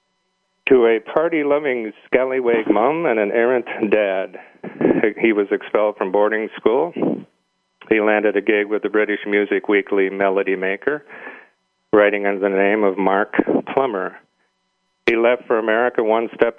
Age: 40-59